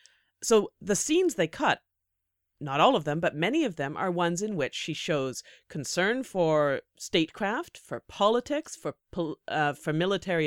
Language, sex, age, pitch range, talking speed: English, female, 30-49, 140-190 Hz, 160 wpm